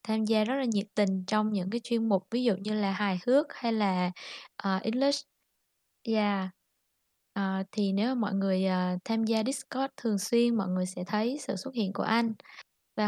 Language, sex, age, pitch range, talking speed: Vietnamese, female, 20-39, 195-235 Hz, 195 wpm